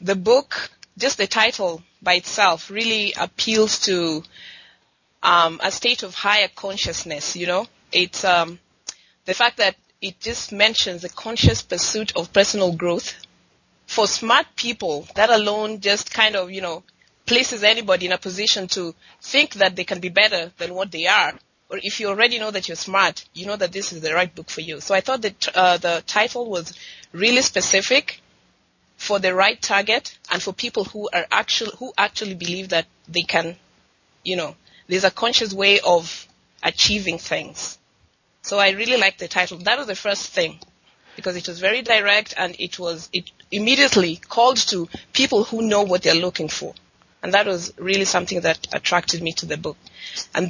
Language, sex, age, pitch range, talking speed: English, female, 20-39, 180-220 Hz, 180 wpm